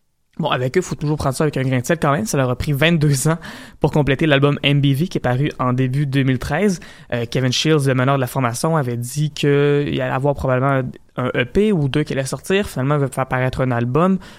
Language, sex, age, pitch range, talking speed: French, male, 20-39, 135-160 Hz, 245 wpm